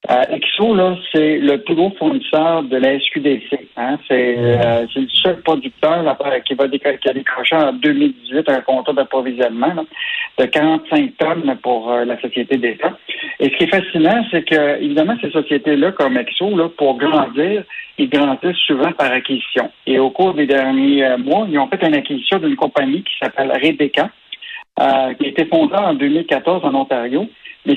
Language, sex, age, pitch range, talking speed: French, male, 60-79, 140-190 Hz, 180 wpm